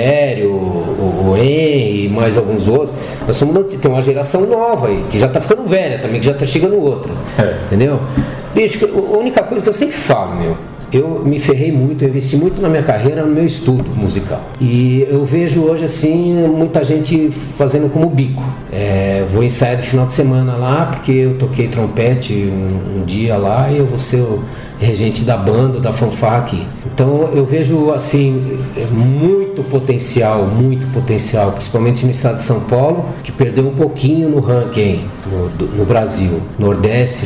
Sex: male